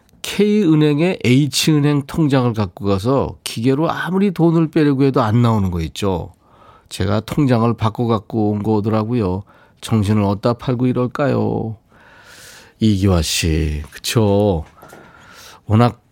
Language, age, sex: Korean, 40-59, male